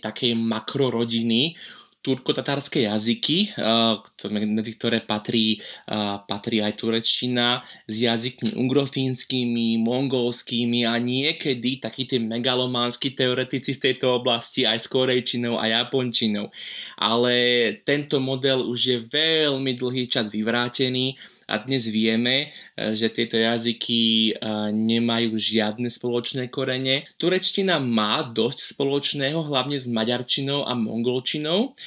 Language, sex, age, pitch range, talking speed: Slovak, male, 20-39, 115-135 Hz, 110 wpm